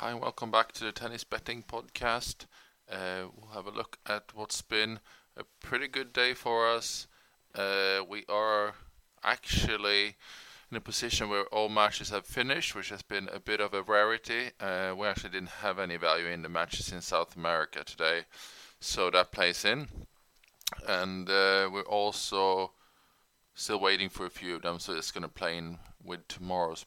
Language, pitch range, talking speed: English, 90-105 Hz, 180 wpm